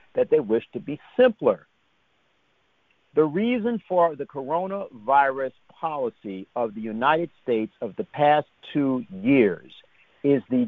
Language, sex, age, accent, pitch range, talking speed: English, male, 60-79, American, 135-200 Hz, 130 wpm